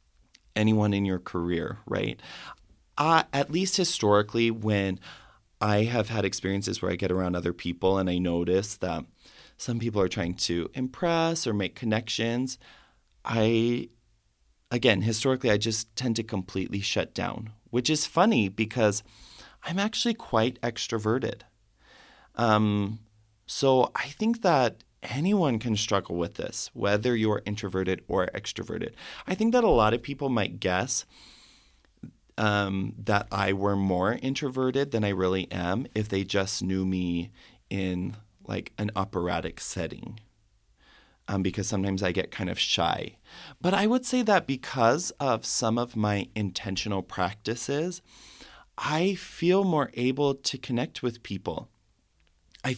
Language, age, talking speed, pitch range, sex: English, 30-49, 140 wpm, 95-125 Hz, male